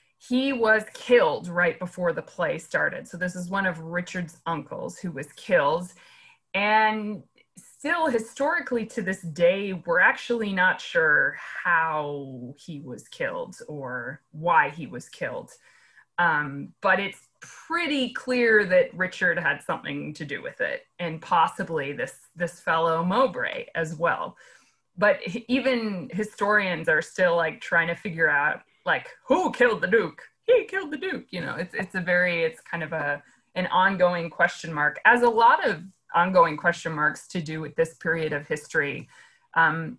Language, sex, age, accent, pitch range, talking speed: English, female, 20-39, American, 165-225 Hz, 160 wpm